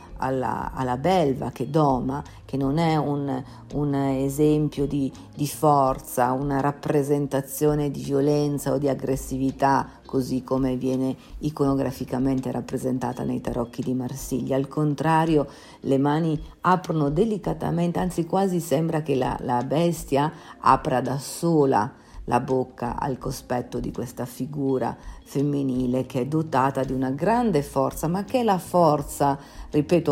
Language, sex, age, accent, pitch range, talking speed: Italian, female, 50-69, native, 130-160 Hz, 135 wpm